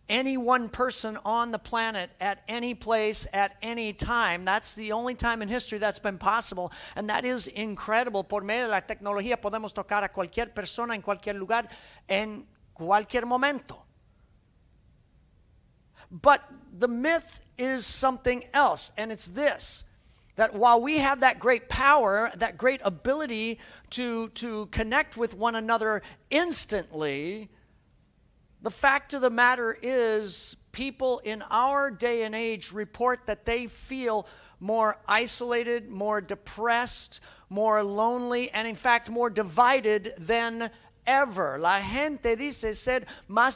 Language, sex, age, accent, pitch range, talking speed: English, male, 50-69, American, 205-245 Hz, 140 wpm